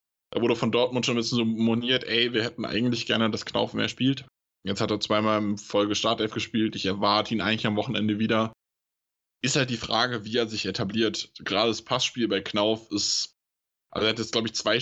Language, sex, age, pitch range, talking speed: German, male, 10-29, 105-120 Hz, 220 wpm